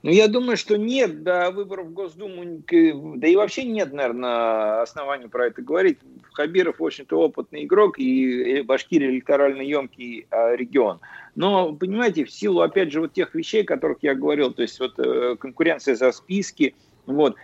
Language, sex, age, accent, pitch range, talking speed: Russian, male, 50-69, native, 130-215 Hz, 160 wpm